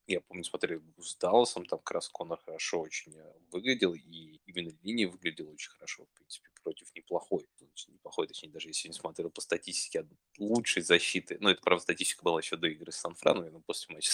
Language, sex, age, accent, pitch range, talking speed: Russian, male, 20-39, native, 85-115 Hz, 200 wpm